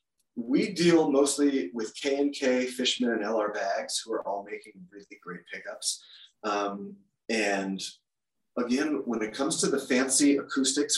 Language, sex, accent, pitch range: English, male, American, 100-120 Hz